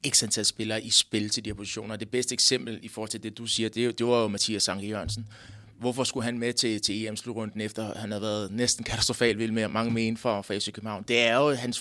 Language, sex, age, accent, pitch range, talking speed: Danish, male, 30-49, native, 115-150 Hz, 235 wpm